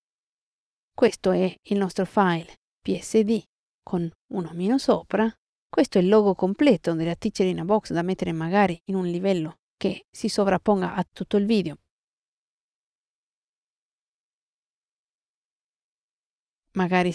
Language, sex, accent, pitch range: Italian, female, native, 180-225 Hz